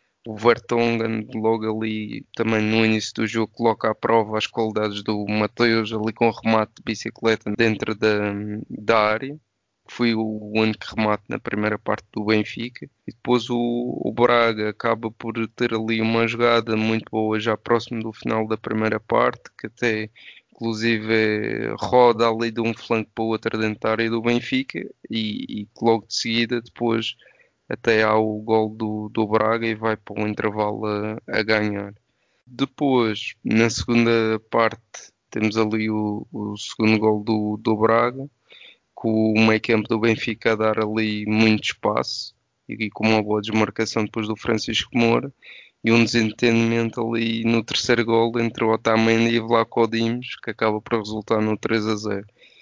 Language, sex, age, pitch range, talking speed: Portuguese, male, 20-39, 110-115 Hz, 170 wpm